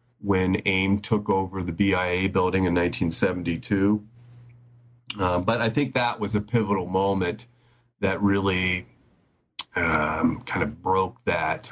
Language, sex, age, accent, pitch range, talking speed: English, male, 30-49, American, 90-120 Hz, 130 wpm